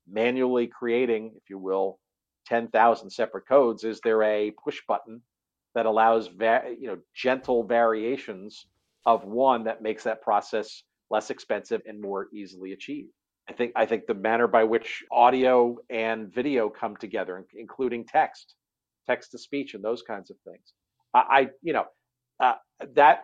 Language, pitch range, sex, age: English, 105-125 Hz, male, 50-69